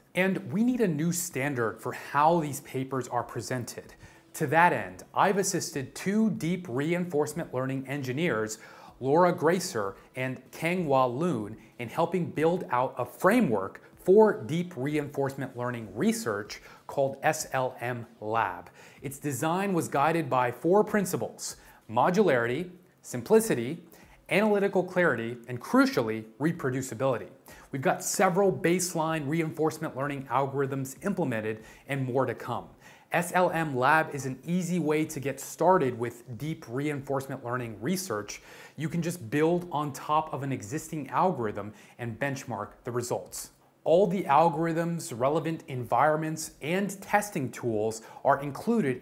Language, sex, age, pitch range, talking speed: English, male, 30-49, 130-170 Hz, 125 wpm